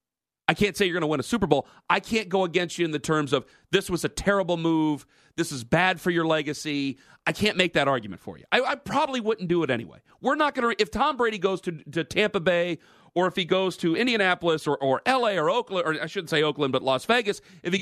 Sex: male